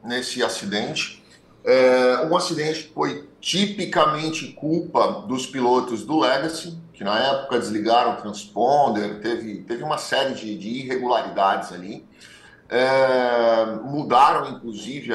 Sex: male